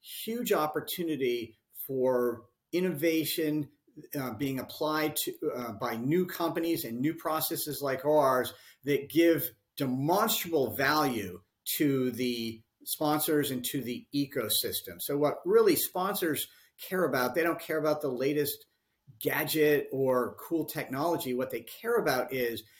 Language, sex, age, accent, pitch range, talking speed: English, male, 50-69, American, 120-160 Hz, 125 wpm